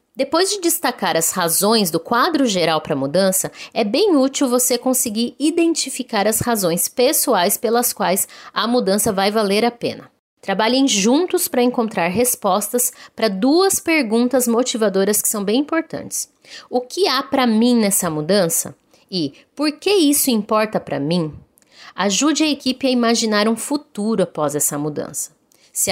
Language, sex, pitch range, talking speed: Portuguese, female, 185-260 Hz, 155 wpm